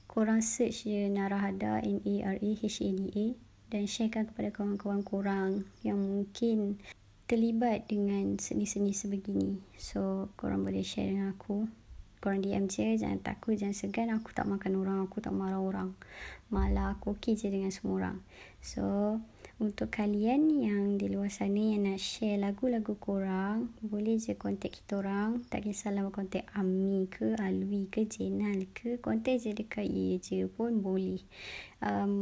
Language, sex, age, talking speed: Malay, male, 20-39, 160 wpm